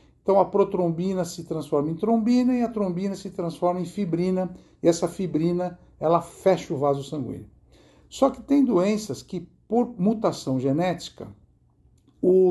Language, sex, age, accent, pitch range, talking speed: Portuguese, male, 60-79, Brazilian, 140-185 Hz, 145 wpm